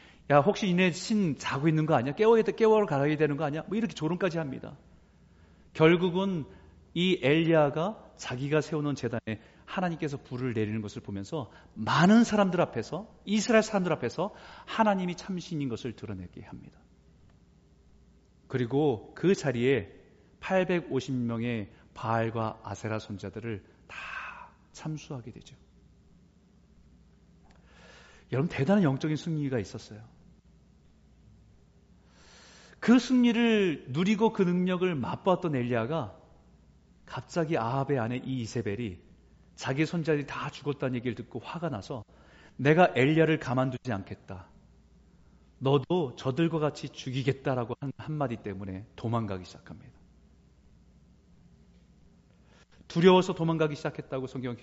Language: Korean